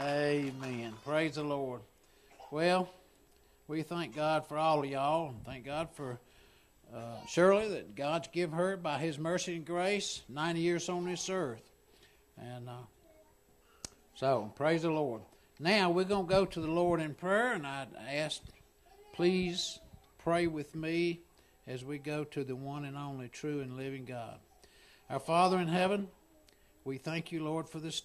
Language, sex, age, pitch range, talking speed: English, male, 60-79, 135-175 Hz, 165 wpm